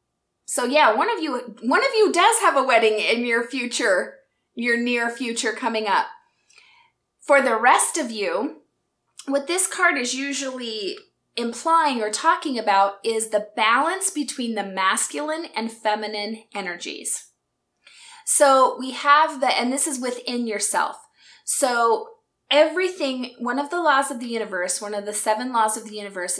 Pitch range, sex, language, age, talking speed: 225-305 Hz, female, English, 20-39, 155 wpm